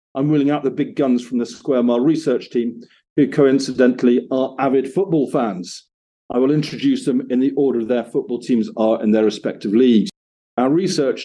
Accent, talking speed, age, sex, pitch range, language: British, 185 wpm, 40-59, male, 115-135 Hz, English